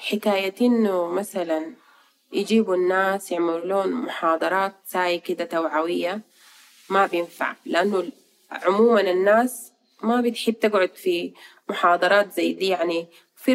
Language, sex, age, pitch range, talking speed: Arabic, female, 30-49, 175-225 Hz, 105 wpm